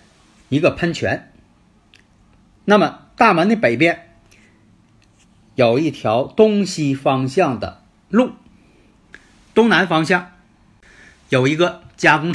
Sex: male